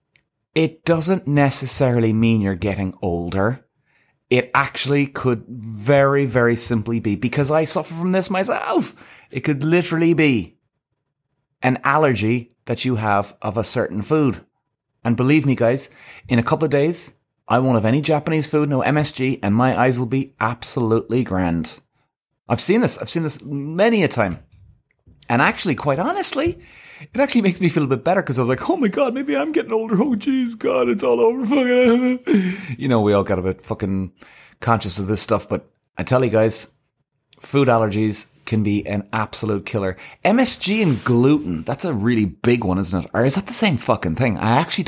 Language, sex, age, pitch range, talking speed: English, male, 30-49, 110-155 Hz, 185 wpm